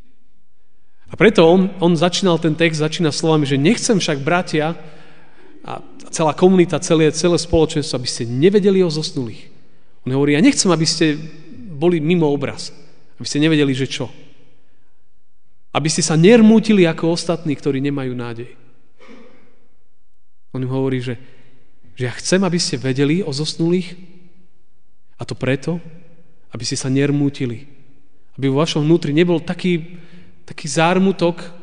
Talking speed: 140 wpm